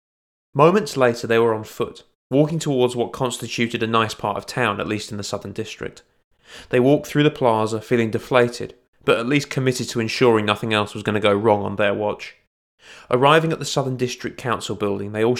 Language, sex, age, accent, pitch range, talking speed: English, male, 20-39, British, 105-130 Hz, 205 wpm